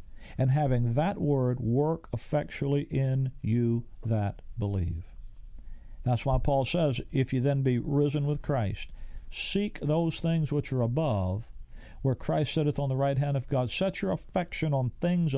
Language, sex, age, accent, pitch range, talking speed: English, male, 50-69, American, 115-150 Hz, 160 wpm